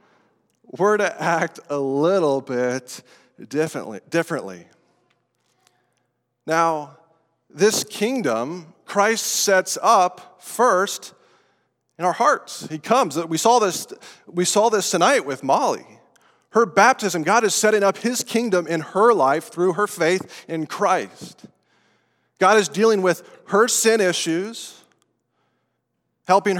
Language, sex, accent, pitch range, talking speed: English, male, American, 155-205 Hz, 115 wpm